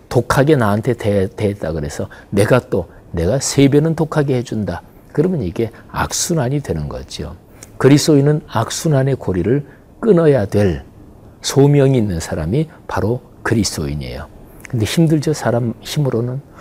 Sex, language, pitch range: male, Korean, 90-140 Hz